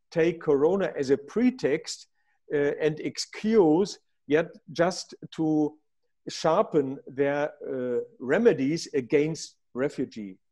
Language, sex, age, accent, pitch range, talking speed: English, male, 50-69, German, 150-200 Hz, 95 wpm